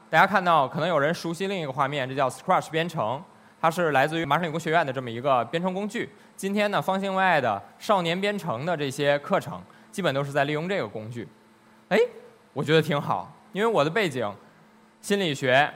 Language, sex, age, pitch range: Chinese, male, 20-39, 145-200 Hz